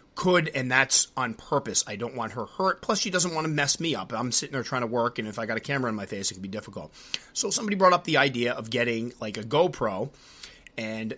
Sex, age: male, 30-49